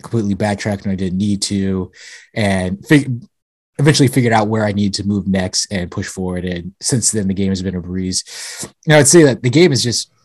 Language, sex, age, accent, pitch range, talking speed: English, male, 20-39, American, 100-130 Hz, 215 wpm